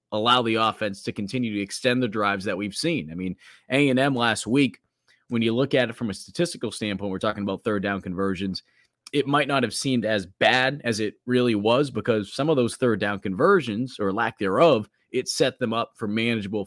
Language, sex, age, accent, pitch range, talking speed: English, male, 30-49, American, 100-125 Hz, 210 wpm